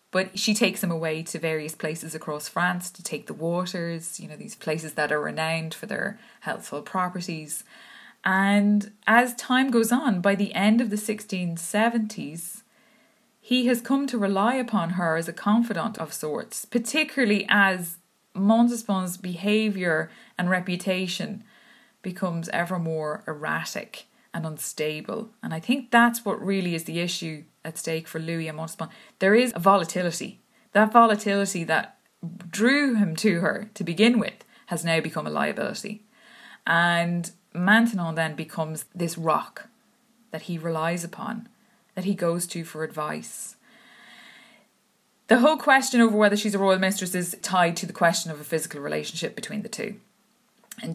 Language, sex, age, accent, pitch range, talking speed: English, female, 20-39, Irish, 165-225 Hz, 155 wpm